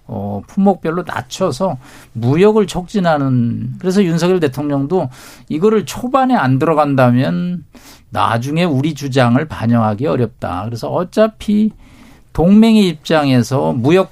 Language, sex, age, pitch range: Korean, male, 50-69, 120-175 Hz